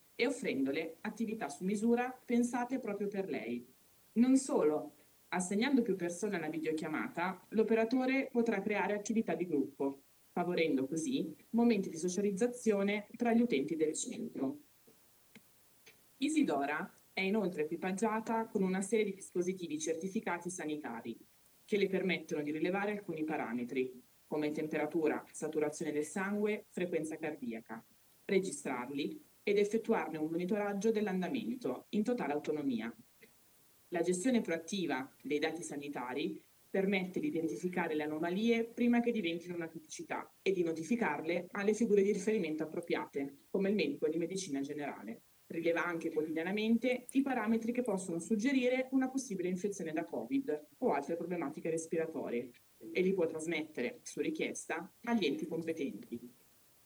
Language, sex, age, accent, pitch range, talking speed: Italian, female, 20-39, native, 160-225 Hz, 130 wpm